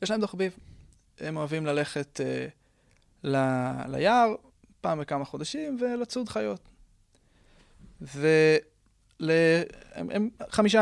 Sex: male